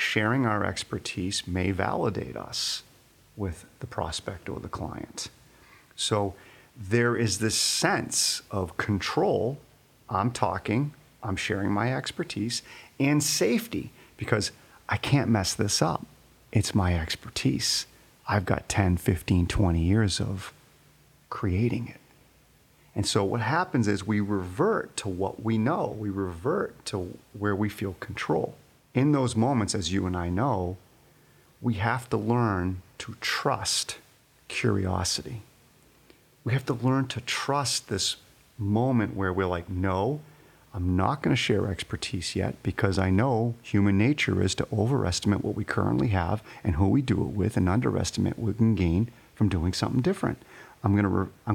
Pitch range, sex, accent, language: 95-125 Hz, male, American, English